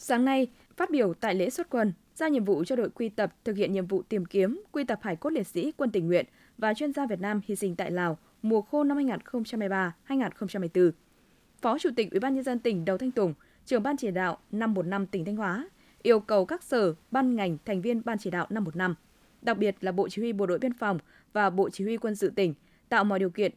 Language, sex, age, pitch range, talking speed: Vietnamese, female, 20-39, 190-255 Hz, 255 wpm